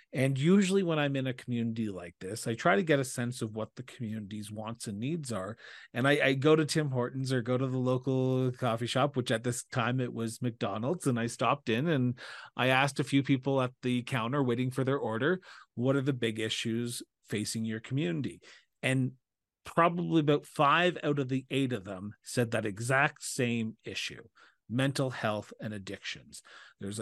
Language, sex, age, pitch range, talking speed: English, male, 40-59, 115-135 Hz, 200 wpm